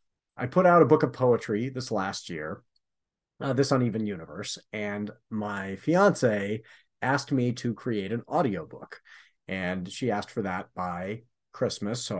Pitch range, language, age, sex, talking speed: 110-145 Hz, English, 40-59, male, 150 wpm